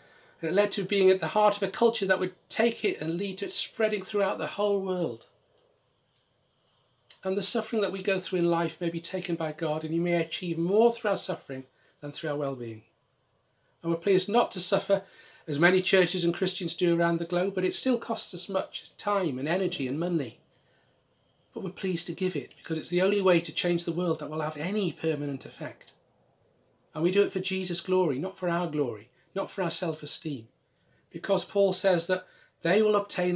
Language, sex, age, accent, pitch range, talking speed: English, male, 40-59, British, 165-200 Hz, 215 wpm